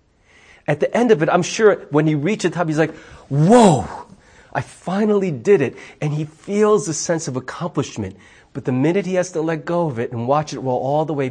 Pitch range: 105-155 Hz